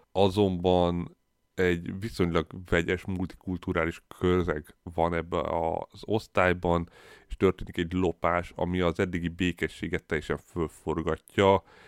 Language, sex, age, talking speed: Hungarian, male, 30-49, 100 wpm